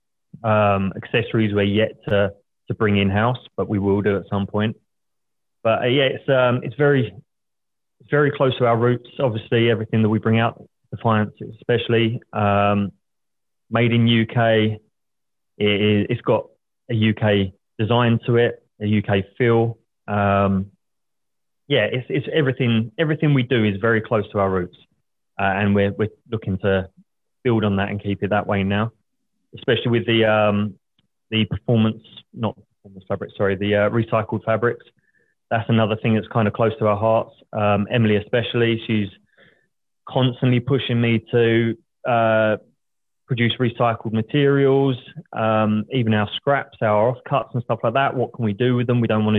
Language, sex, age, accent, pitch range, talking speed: English, male, 20-39, British, 105-120 Hz, 165 wpm